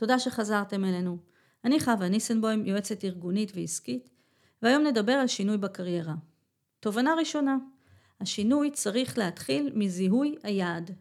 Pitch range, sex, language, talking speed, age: 180-245 Hz, female, Hebrew, 115 wpm, 40-59